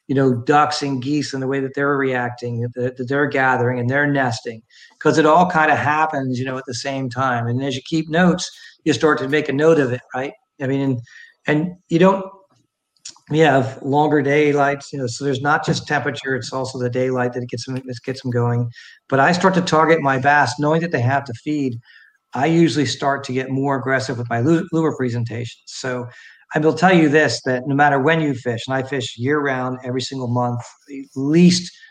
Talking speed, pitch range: 220 wpm, 125-145 Hz